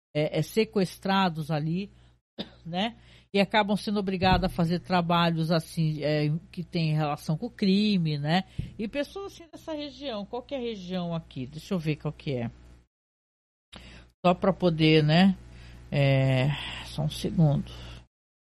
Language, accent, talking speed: Portuguese, Brazilian, 150 wpm